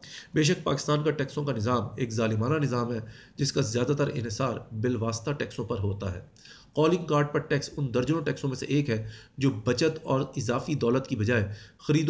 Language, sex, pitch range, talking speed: Urdu, male, 120-150 Hz, 205 wpm